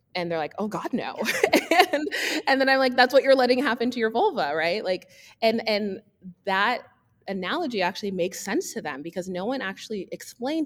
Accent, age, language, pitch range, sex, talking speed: American, 20-39, English, 160-225 Hz, female, 195 wpm